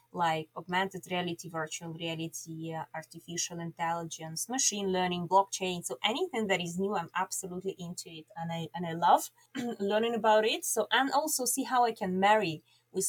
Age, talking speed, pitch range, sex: 20-39, 170 wpm, 175-230 Hz, female